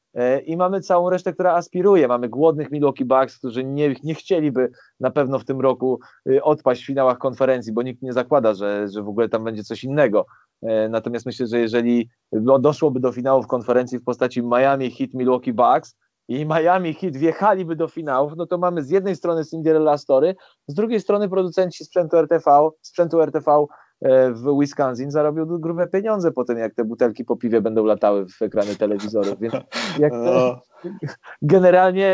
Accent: native